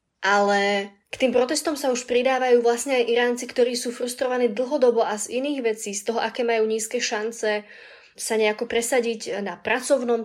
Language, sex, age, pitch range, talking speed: Slovak, female, 20-39, 205-240 Hz, 170 wpm